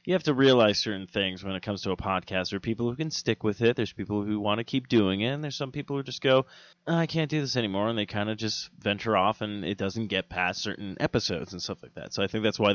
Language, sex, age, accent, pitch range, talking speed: English, male, 20-39, American, 100-125 Hz, 295 wpm